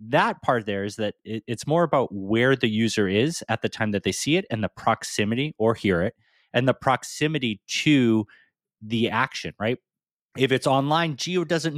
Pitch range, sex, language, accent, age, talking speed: 100-130 Hz, male, English, American, 30-49, 190 wpm